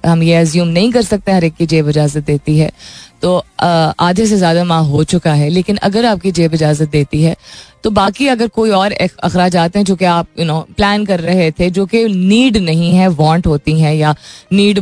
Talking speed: 225 wpm